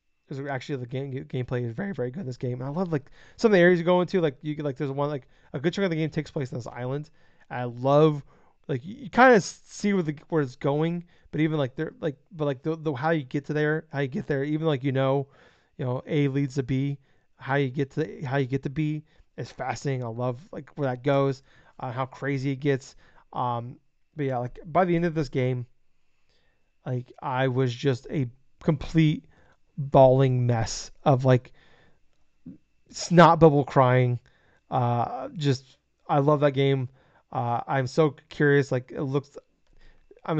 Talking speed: 210 wpm